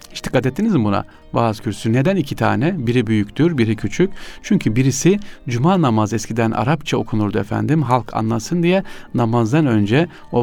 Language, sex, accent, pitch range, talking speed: Turkish, male, native, 110-150 Hz, 160 wpm